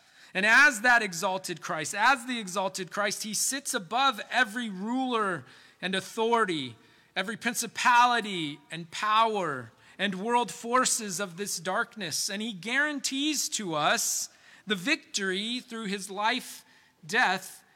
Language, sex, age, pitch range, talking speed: English, male, 40-59, 180-230 Hz, 125 wpm